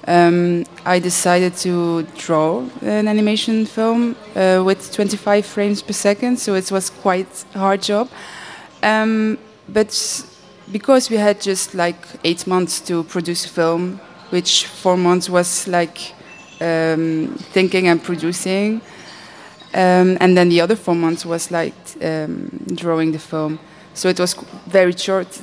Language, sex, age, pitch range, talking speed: English, female, 20-39, 170-200 Hz, 145 wpm